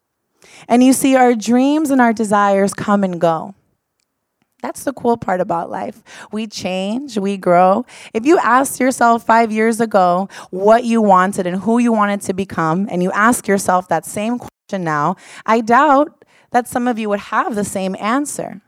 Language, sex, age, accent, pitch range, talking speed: English, female, 20-39, American, 180-220 Hz, 180 wpm